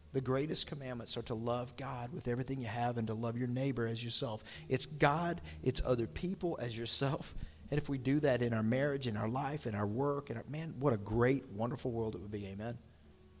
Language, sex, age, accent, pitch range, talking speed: English, male, 40-59, American, 95-125 Hz, 225 wpm